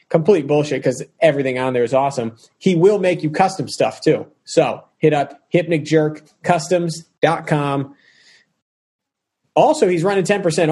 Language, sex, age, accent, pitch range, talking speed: English, male, 30-49, American, 145-170 Hz, 125 wpm